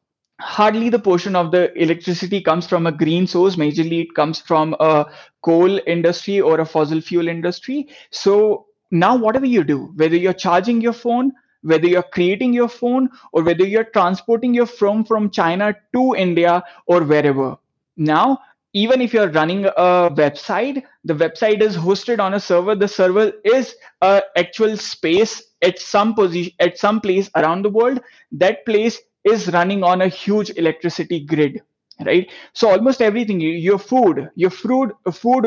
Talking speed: 160 wpm